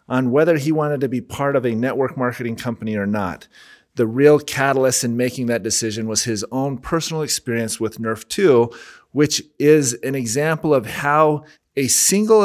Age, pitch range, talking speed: 30-49, 115-140 Hz, 180 wpm